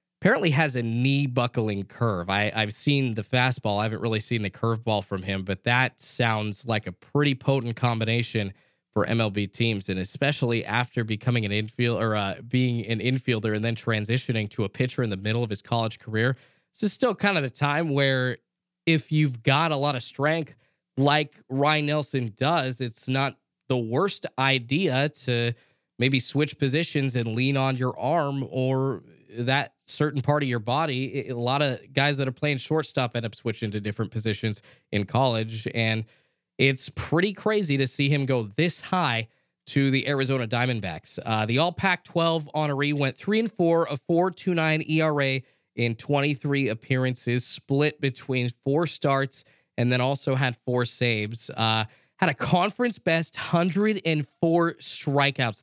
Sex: male